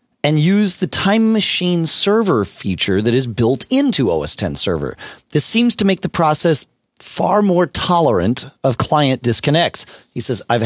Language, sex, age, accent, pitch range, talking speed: English, male, 40-59, American, 100-150 Hz, 165 wpm